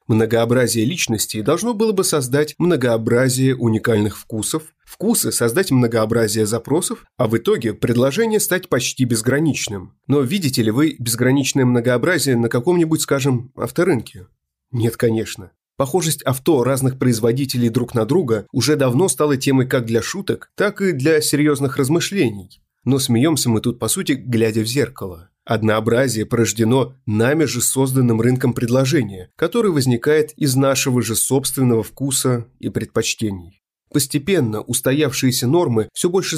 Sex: male